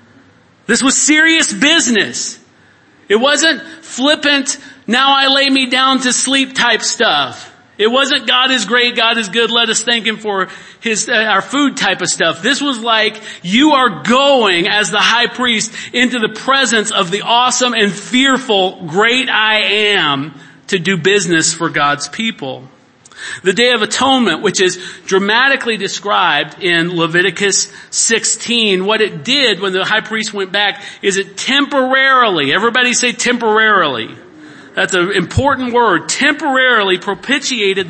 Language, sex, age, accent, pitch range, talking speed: English, male, 40-59, American, 190-250 Hz, 150 wpm